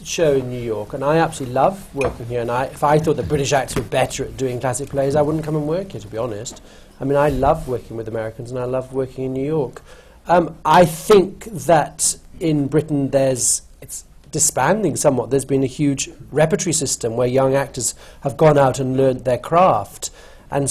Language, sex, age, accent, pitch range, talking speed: English, male, 40-59, British, 130-160 Hz, 210 wpm